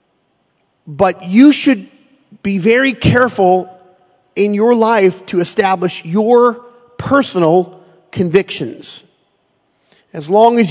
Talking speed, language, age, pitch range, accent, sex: 95 wpm, English, 40-59, 175-220 Hz, American, male